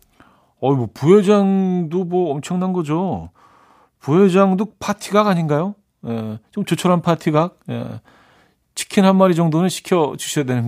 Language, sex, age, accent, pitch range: Korean, male, 40-59, native, 115-165 Hz